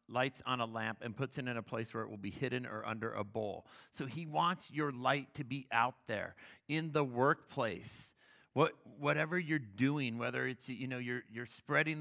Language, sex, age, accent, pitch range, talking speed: English, male, 40-59, American, 110-135 Hz, 210 wpm